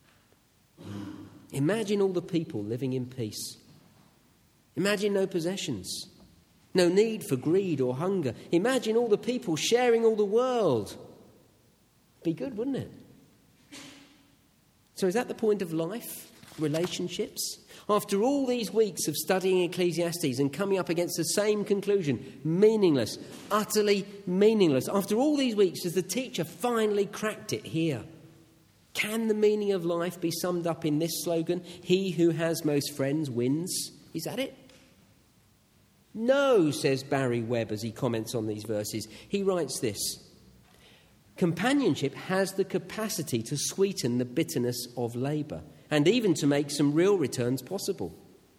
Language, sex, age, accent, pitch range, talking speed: English, male, 40-59, British, 135-200 Hz, 140 wpm